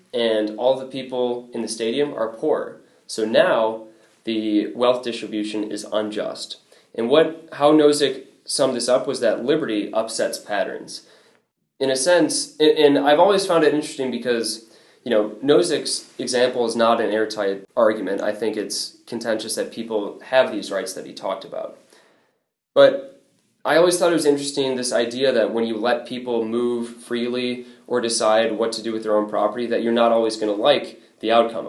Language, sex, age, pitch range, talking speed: English, male, 20-39, 110-145 Hz, 180 wpm